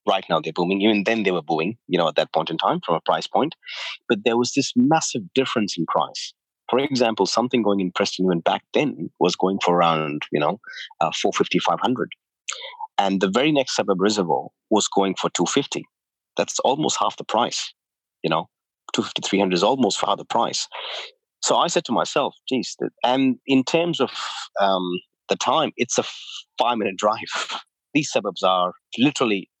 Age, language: 30-49, English